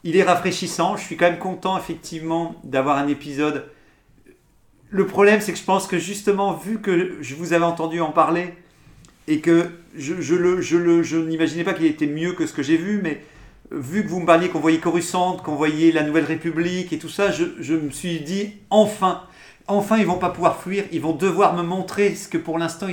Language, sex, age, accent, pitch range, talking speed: French, male, 50-69, French, 145-185 Hz, 220 wpm